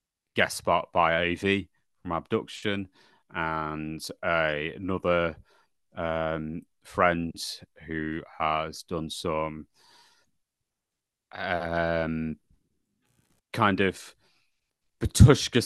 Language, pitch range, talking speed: English, 80-100 Hz, 75 wpm